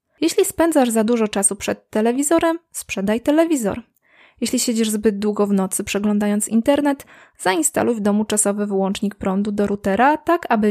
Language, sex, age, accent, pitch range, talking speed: Polish, female, 20-39, native, 205-255 Hz, 150 wpm